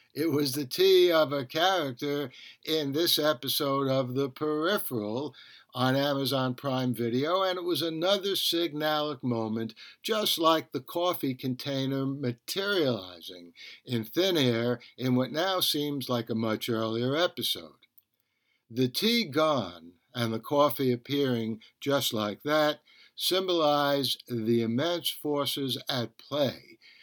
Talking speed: 125 wpm